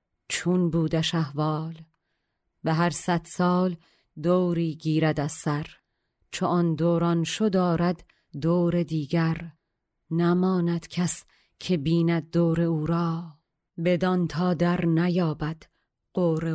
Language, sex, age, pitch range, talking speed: Persian, female, 40-59, 155-175 Hz, 105 wpm